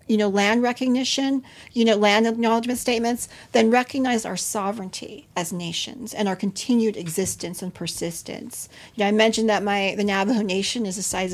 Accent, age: American, 40-59